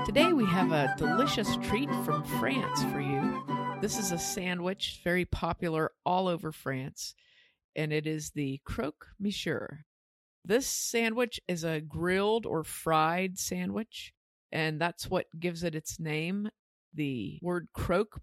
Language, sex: English, female